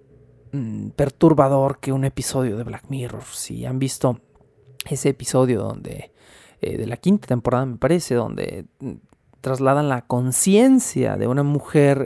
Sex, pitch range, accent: male, 130-155 Hz, Mexican